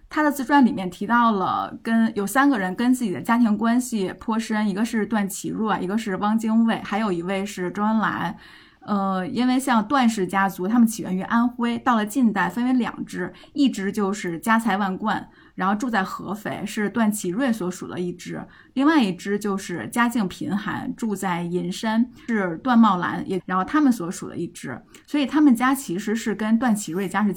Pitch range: 195-240 Hz